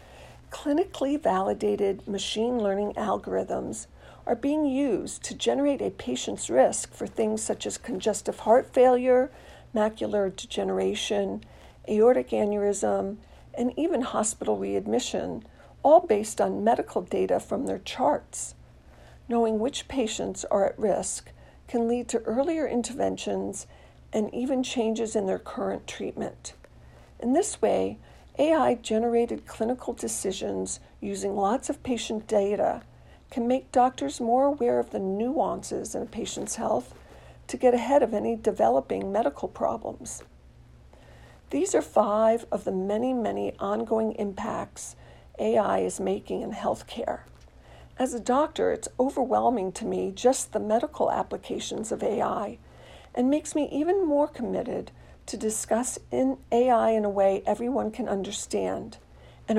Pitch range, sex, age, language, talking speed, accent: 195-250 Hz, female, 50-69, English, 130 wpm, American